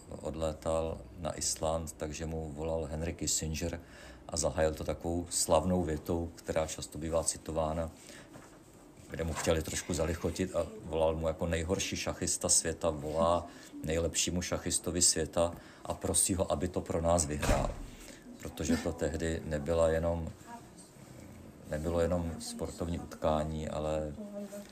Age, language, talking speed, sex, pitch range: 50-69, Czech, 125 wpm, male, 80-85 Hz